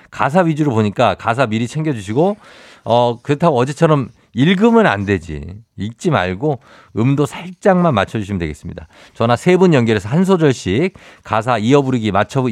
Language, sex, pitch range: Korean, male, 105-155 Hz